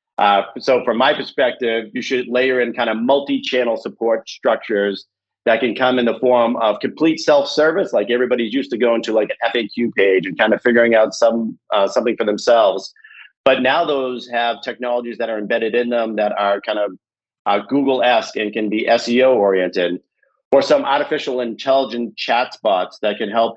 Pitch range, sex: 115-145 Hz, male